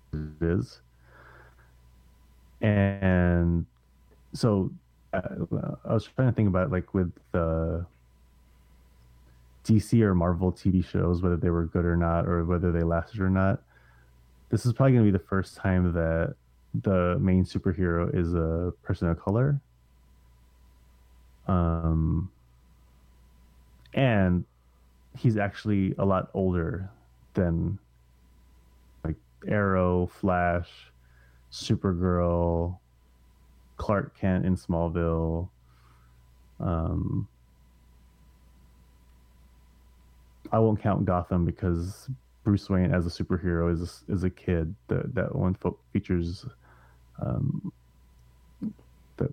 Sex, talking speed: male, 100 wpm